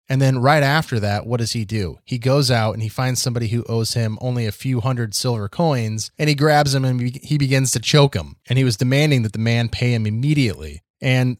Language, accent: English, American